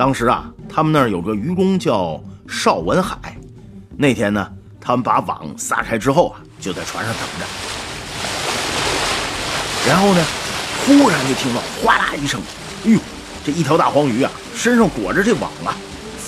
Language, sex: Chinese, male